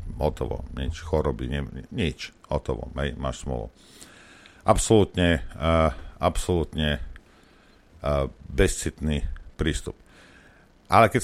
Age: 50-69